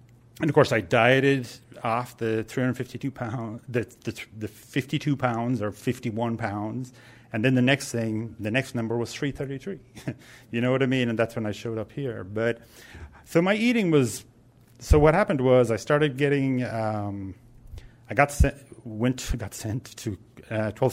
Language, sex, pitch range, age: English, male, 115-135 Hz, 40-59